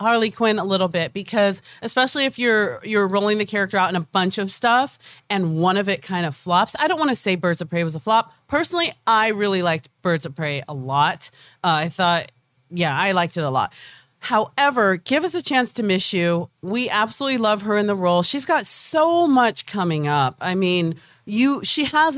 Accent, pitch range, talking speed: American, 160-220 Hz, 220 wpm